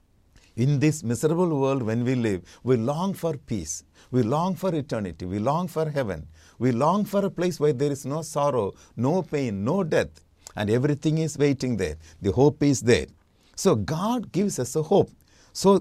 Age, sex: 60-79, male